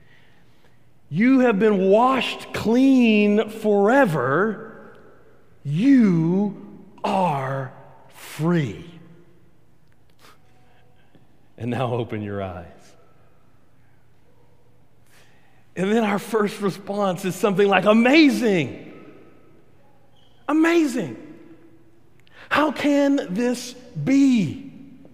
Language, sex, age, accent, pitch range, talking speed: English, male, 50-69, American, 135-220 Hz, 65 wpm